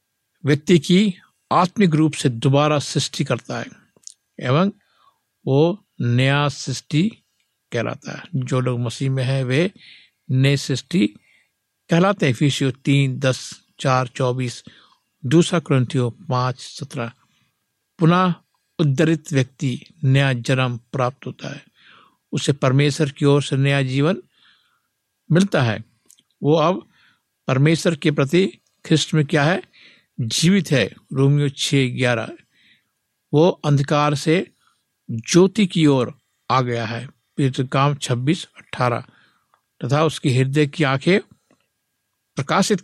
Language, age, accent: Hindi, 60-79, native